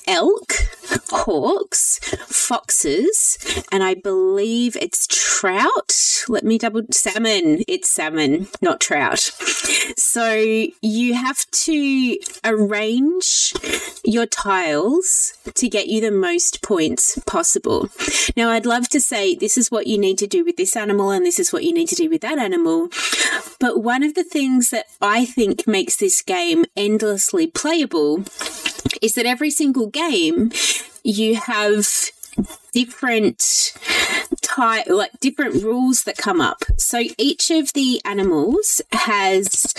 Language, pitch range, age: English, 220-345 Hz, 30-49